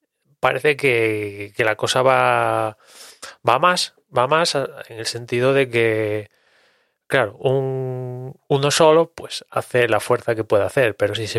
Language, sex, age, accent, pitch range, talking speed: English, male, 20-39, Spanish, 110-135 Hz, 155 wpm